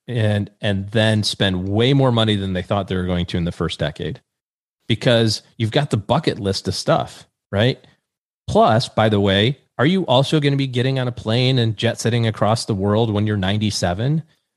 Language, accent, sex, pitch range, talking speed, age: English, American, male, 100-130 Hz, 200 wpm, 30-49